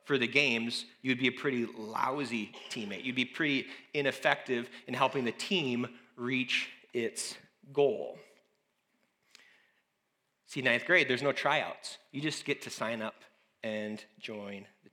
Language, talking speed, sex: English, 140 wpm, male